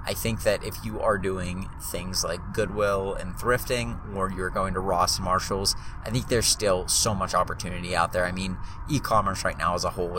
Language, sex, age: English, male, 30-49